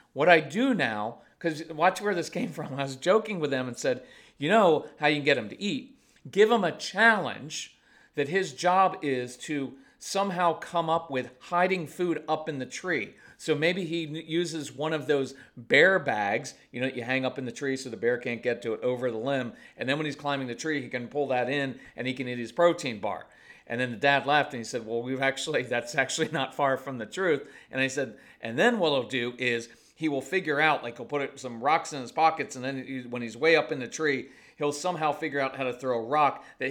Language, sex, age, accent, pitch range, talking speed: English, male, 40-59, American, 130-180 Hz, 245 wpm